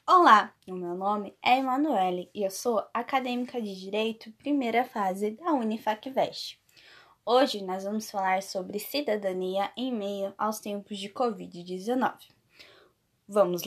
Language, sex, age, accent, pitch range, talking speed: Portuguese, female, 10-29, Brazilian, 195-245 Hz, 125 wpm